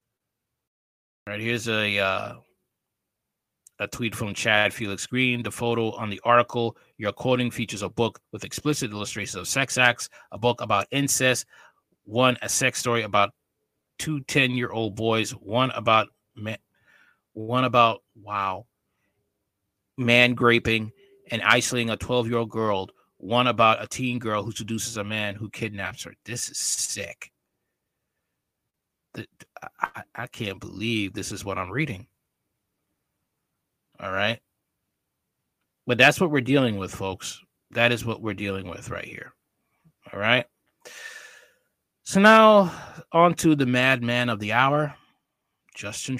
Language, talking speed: English, 135 wpm